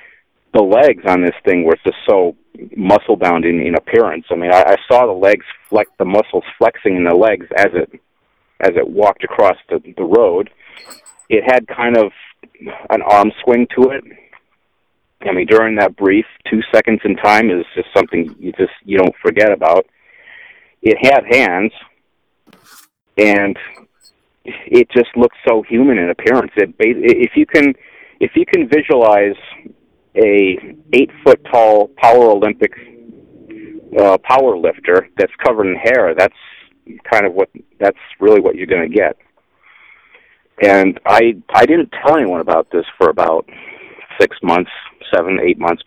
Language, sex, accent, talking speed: English, male, American, 160 wpm